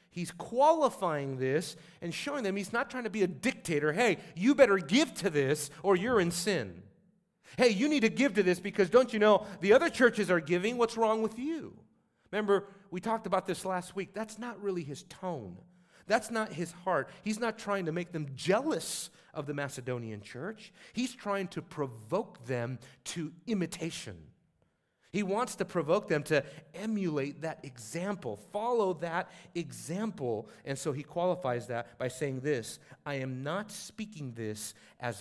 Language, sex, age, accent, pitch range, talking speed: English, male, 40-59, American, 145-200 Hz, 175 wpm